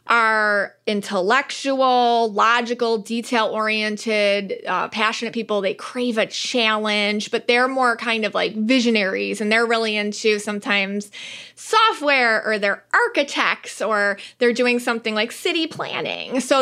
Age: 20-39